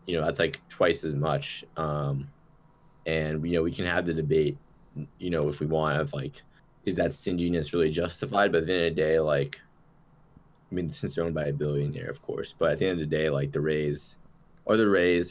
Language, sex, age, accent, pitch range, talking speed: English, male, 20-39, American, 75-85 Hz, 225 wpm